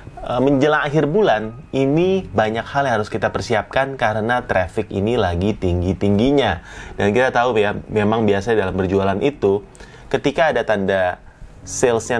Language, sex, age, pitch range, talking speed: Indonesian, male, 30-49, 95-130 Hz, 140 wpm